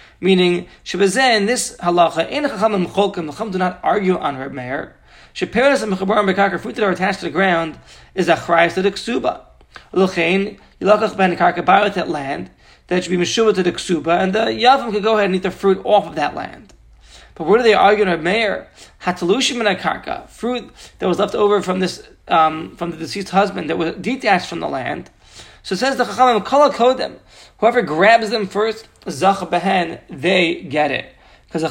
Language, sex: English, male